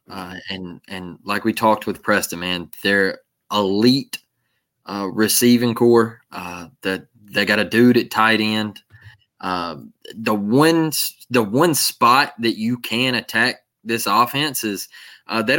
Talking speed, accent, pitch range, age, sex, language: 150 wpm, American, 110-140 Hz, 20-39, male, English